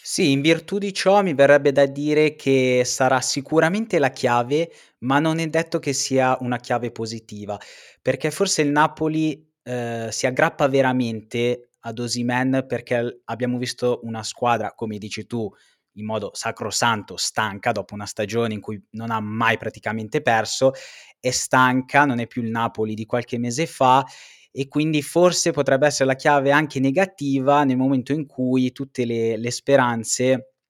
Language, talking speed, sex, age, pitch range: Italian, 165 wpm, male, 20-39, 115-140 Hz